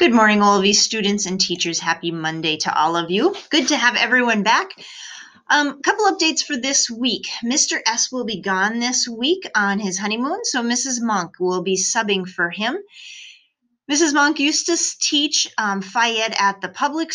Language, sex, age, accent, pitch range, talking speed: English, female, 30-49, American, 180-245 Hz, 185 wpm